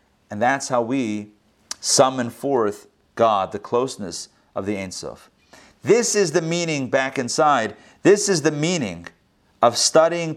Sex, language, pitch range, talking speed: male, English, 115-160 Hz, 140 wpm